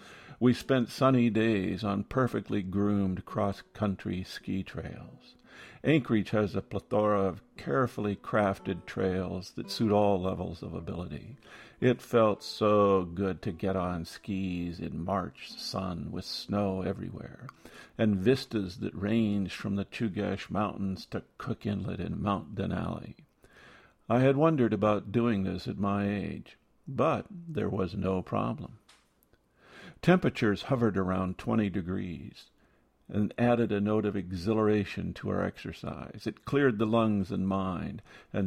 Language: English